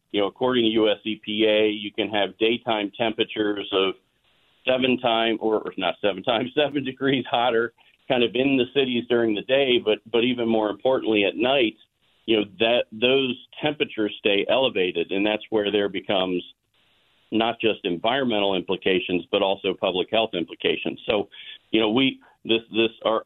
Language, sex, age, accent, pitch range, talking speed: English, male, 40-59, American, 105-120 Hz, 165 wpm